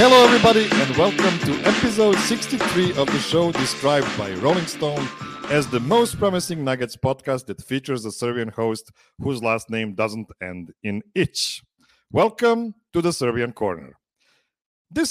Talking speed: 150 wpm